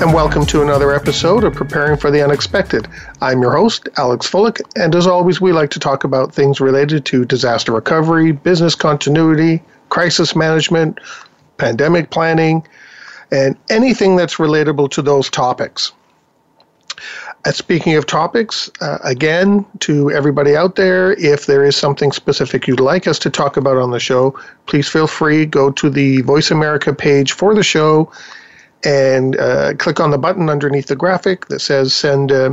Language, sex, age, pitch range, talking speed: English, male, 50-69, 140-165 Hz, 170 wpm